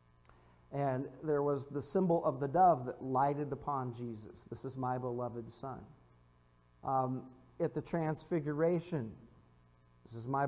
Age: 50-69